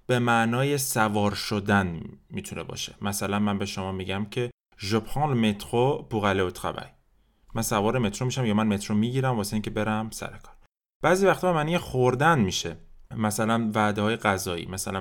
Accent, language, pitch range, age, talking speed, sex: Turkish, French, 100-130 Hz, 20-39, 170 wpm, male